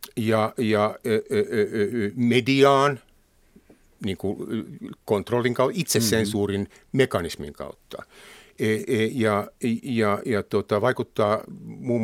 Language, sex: Finnish, male